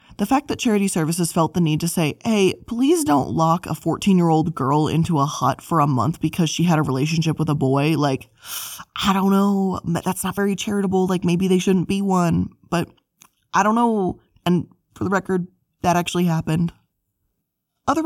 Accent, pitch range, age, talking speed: American, 160-200 Hz, 20-39, 190 wpm